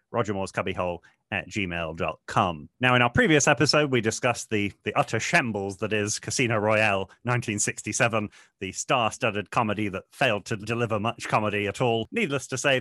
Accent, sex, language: British, male, English